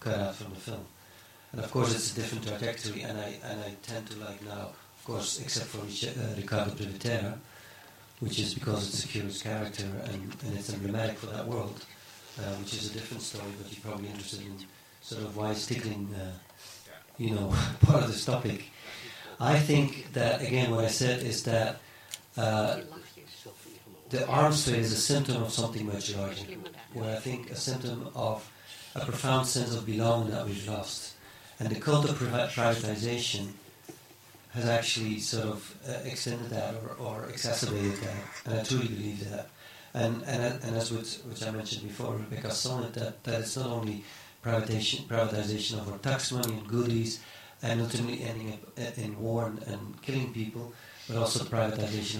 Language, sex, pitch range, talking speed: English, male, 105-120 Hz, 180 wpm